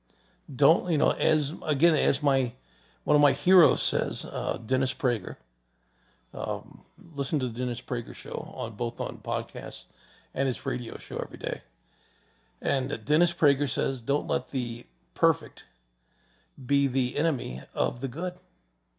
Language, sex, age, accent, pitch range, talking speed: English, male, 50-69, American, 120-160 Hz, 150 wpm